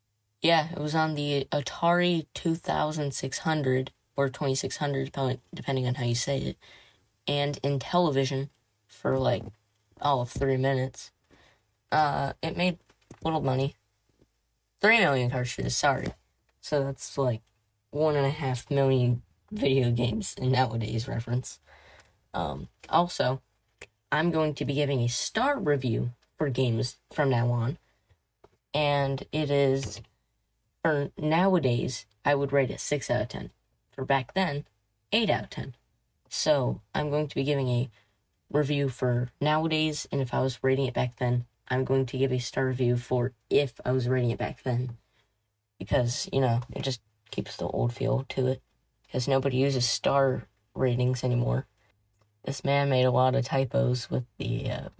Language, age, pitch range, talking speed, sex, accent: English, 10-29, 120-140 Hz, 155 wpm, female, American